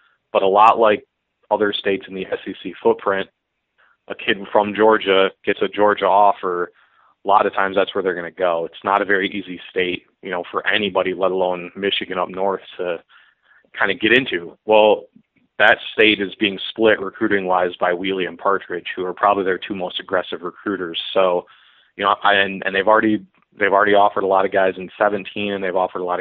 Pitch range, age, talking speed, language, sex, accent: 95-105 Hz, 30-49, 205 wpm, English, male, American